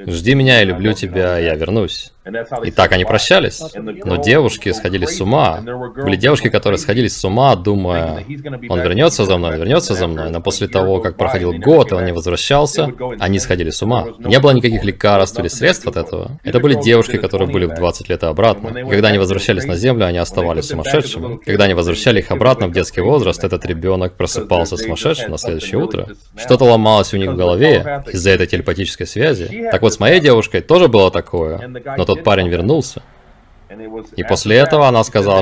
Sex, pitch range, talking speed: male, 90-120 Hz, 190 wpm